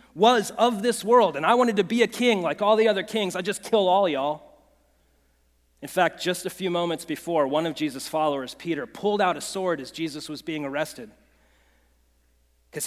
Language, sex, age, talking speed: English, male, 40-59, 200 wpm